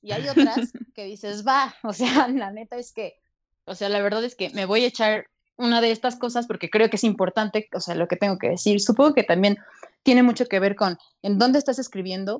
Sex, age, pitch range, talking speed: female, 20-39, 200-245 Hz, 240 wpm